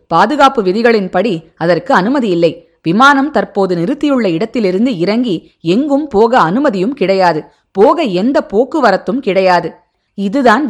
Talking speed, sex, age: 100 wpm, female, 20-39